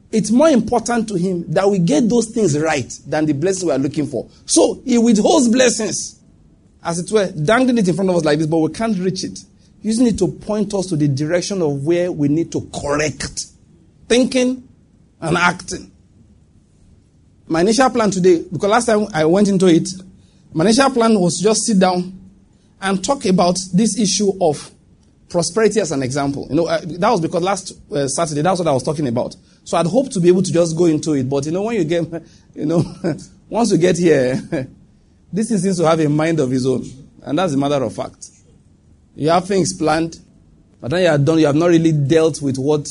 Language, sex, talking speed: English, male, 215 wpm